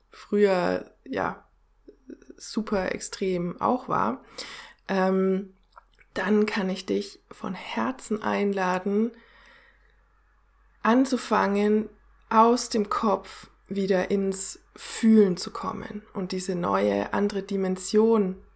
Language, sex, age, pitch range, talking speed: German, female, 20-39, 185-215 Hz, 90 wpm